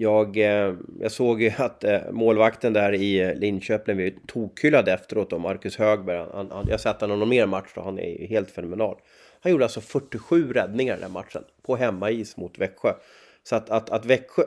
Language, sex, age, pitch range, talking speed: Swedish, male, 30-49, 100-120 Hz, 205 wpm